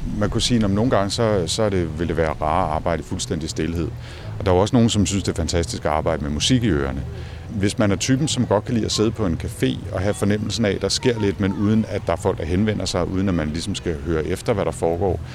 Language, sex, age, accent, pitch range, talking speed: Danish, male, 50-69, native, 85-110 Hz, 285 wpm